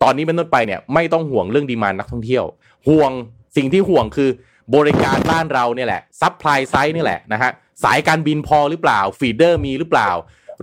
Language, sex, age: Thai, male, 20-39